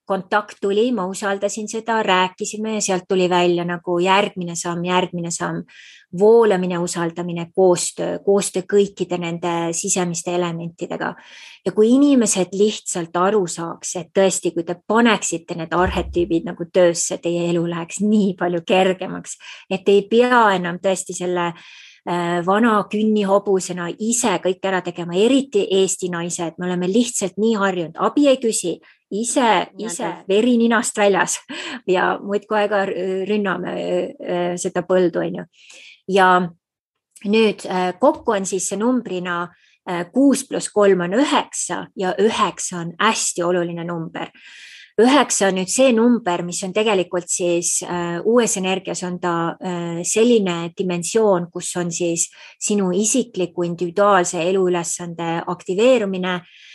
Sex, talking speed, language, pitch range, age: female, 130 wpm, English, 175-210 Hz, 20-39